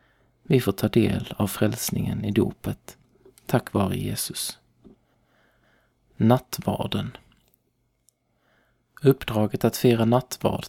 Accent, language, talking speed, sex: native, Swedish, 90 wpm, male